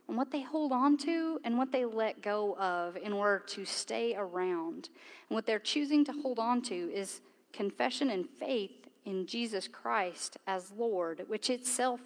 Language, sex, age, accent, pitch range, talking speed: English, female, 40-59, American, 205-295 Hz, 180 wpm